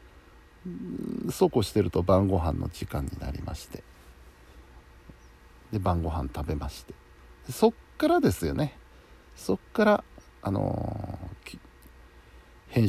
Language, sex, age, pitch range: Japanese, male, 60-79, 70-105 Hz